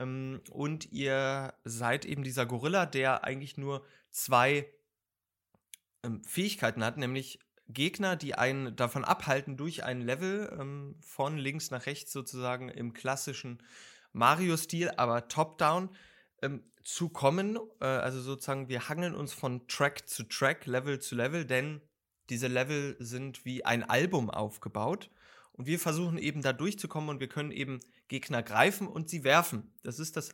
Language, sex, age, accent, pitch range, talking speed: German, male, 30-49, German, 125-155 Hz, 140 wpm